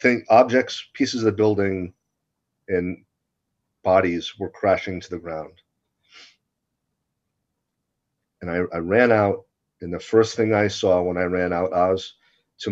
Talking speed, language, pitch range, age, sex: 145 wpm, English, 90-105 Hz, 40-59, male